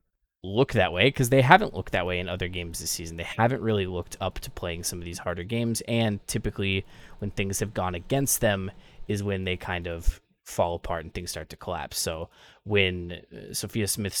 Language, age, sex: English, 20-39, male